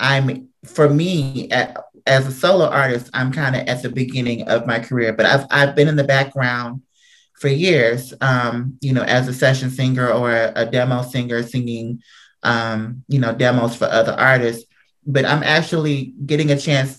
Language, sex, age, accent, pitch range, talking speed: English, male, 30-49, American, 130-150 Hz, 185 wpm